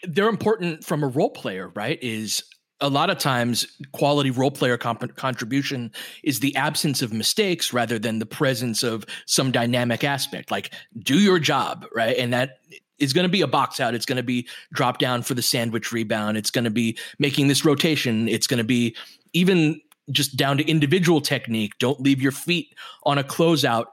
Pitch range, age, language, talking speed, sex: 125-160 Hz, 30-49, English, 195 wpm, male